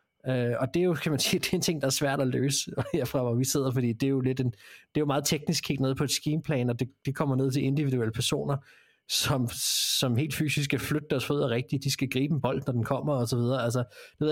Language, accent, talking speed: Danish, native, 275 wpm